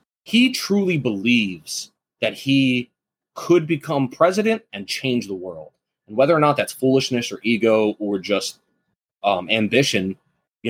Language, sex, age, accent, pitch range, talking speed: English, male, 20-39, American, 115-155 Hz, 140 wpm